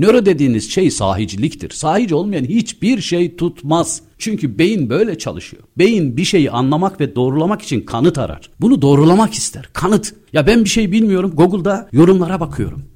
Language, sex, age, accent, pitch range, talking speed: Turkish, male, 50-69, native, 115-175 Hz, 155 wpm